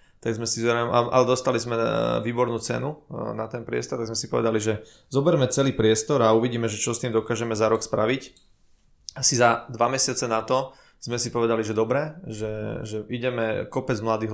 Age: 20-39